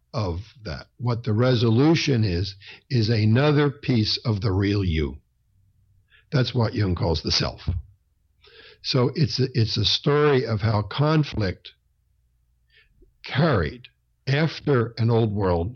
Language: English